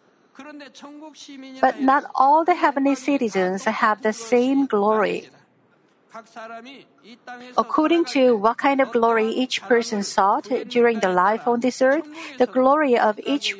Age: 50-69